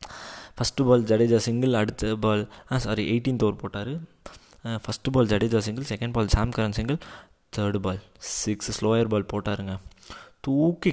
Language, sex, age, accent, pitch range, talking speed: Tamil, male, 20-39, native, 105-120 Hz, 150 wpm